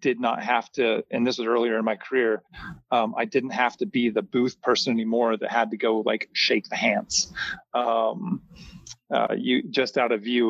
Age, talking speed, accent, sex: 30-49, 205 wpm, American, male